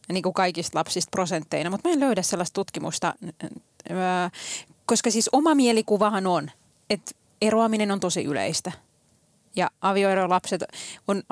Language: Finnish